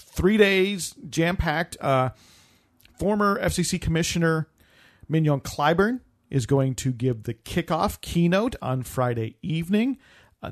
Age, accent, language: 40-59, American, English